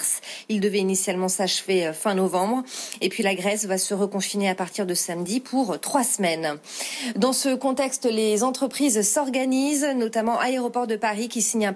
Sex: female